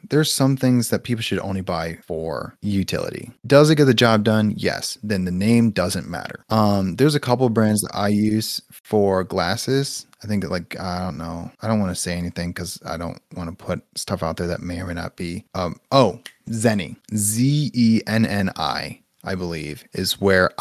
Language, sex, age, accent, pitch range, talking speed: English, male, 30-49, American, 100-120 Hz, 200 wpm